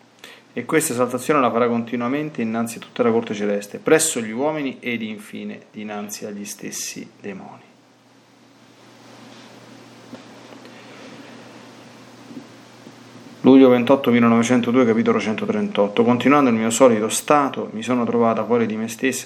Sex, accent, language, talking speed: male, native, Italian, 120 wpm